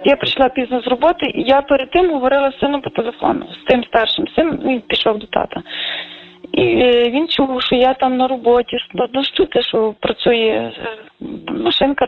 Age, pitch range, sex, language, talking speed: 20-39, 240-275 Hz, female, Ukrainian, 190 wpm